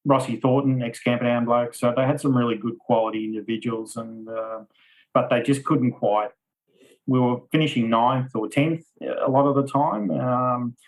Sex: male